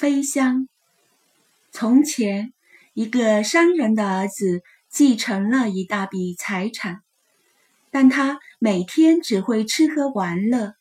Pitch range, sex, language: 220-300 Hz, female, Chinese